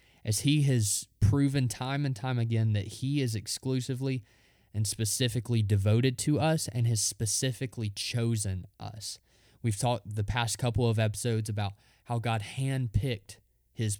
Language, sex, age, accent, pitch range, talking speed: English, male, 20-39, American, 105-120 Hz, 145 wpm